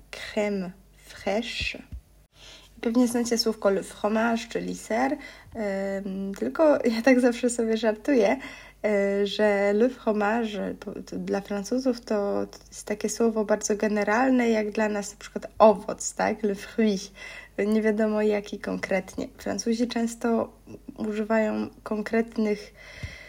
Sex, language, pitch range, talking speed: female, Polish, 200-230 Hz, 110 wpm